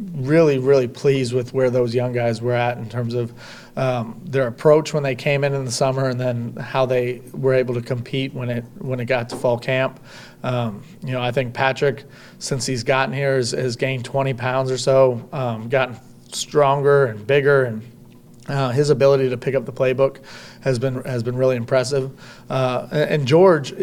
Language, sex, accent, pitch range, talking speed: English, male, American, 125-140 Hz, 200 wpm